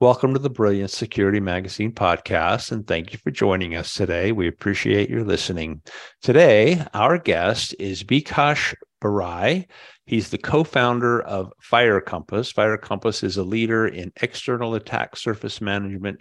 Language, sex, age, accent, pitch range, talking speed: English, male, 50-69, American, 95-115 Hz, 150 wpm